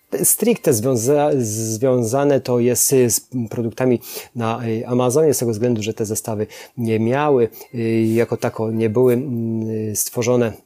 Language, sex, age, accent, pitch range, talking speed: Polish, male, 30-49, native, 115-140 Hz, 125 wpm